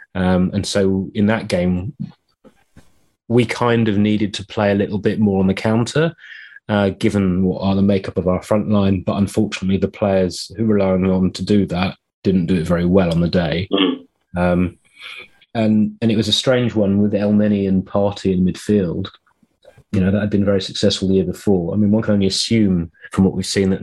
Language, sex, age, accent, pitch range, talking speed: English, male, 30-49, British, 95-105 Hz, 205 wpm